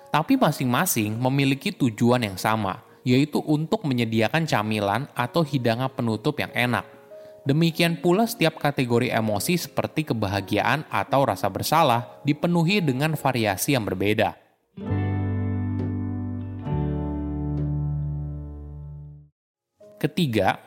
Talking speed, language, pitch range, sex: 90 wpm, Indonesian, 105-155 Hz, male